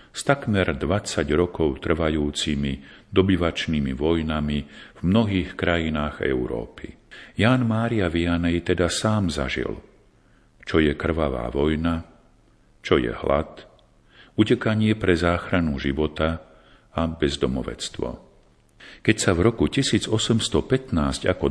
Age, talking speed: 50-69, 100 wpm